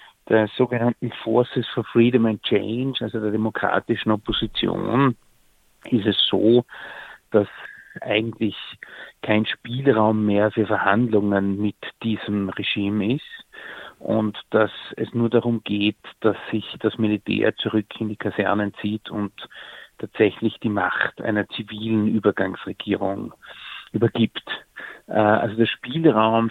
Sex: male